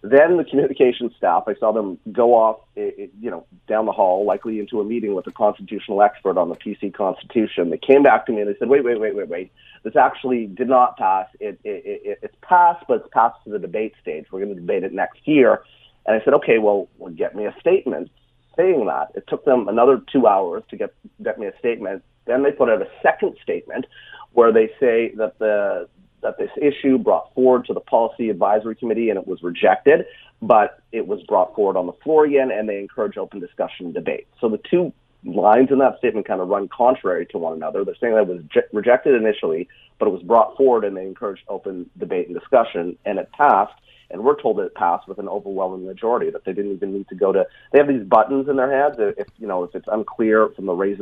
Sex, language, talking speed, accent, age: male, English, 235 wpm, American, 30-49